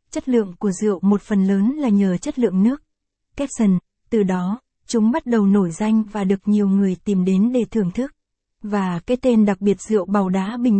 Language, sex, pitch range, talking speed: Vietnamese, female, 195-235 Hz, 210 wpm